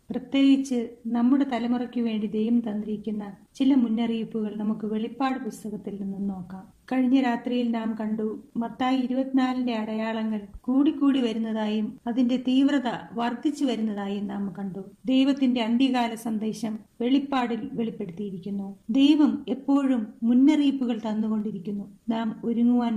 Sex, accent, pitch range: female, native, 220-270 Hz